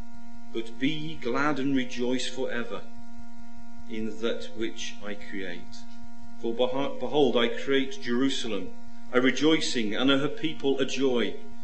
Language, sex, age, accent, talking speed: English, male, 40-59, British, 135 wpm